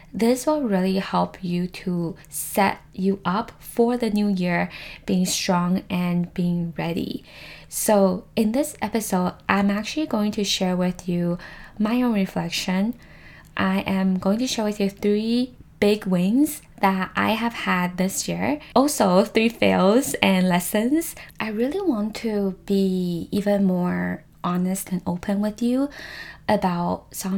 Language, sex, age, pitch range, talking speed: English, female, 10-29, 175-215 Hz, 145 wpm